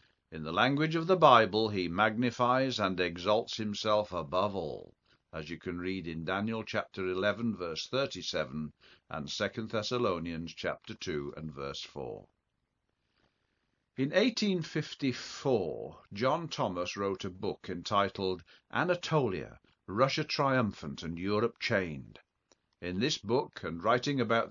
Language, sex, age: English, male, 50-69